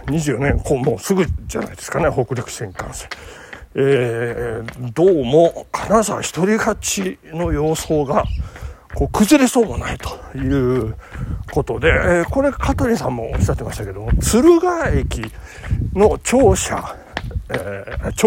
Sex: male